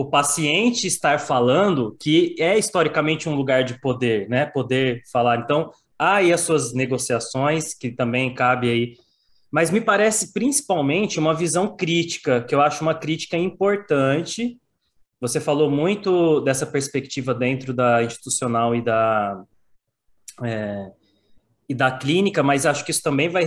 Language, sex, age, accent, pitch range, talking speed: Portuguese, male, 20-39, Brazilian, 120-160 Hz, 145 wpm